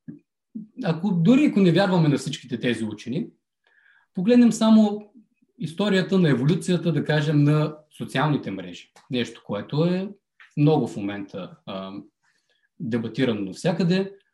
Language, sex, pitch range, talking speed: Bulgarian, male, 120-170 Hz, 115 wpm